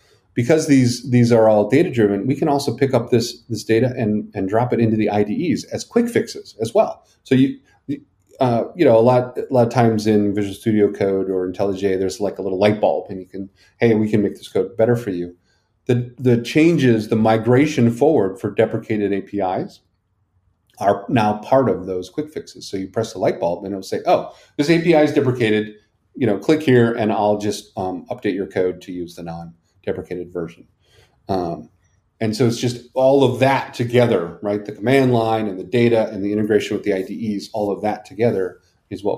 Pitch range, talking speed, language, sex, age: 100-120 Hz, 210 wpm, English, male, 40-59